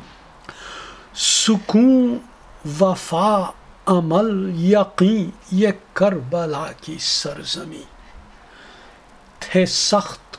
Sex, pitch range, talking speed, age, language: male, 170-200 Hz, 60 wpm, 60-79, Urdu